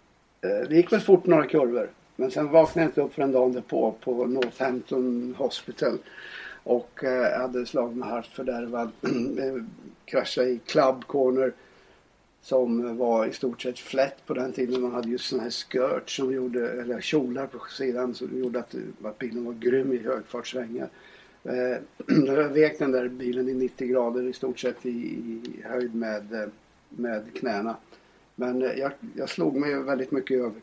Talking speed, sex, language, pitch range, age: 170 wpm, male, Swedish, 120-130 Hz, 60-79